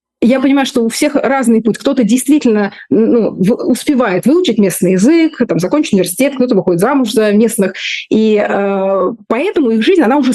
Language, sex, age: Russian, female, 20-39